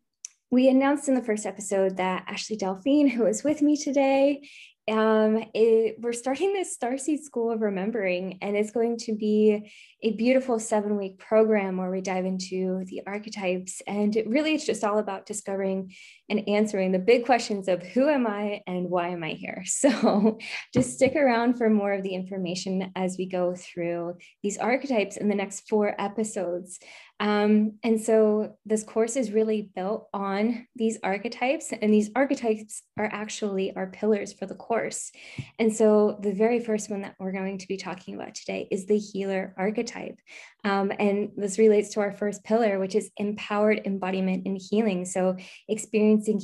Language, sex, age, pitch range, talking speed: English, female, 20-39, 190-225 Hz, 175 wpm